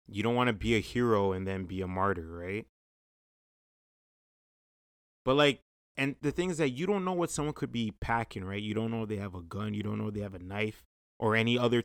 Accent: American